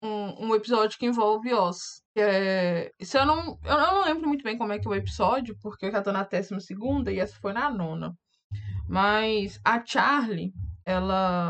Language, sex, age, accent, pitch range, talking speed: Portuguese, female, 10-29, Brazilian, 195-245 Hz, 195 wpm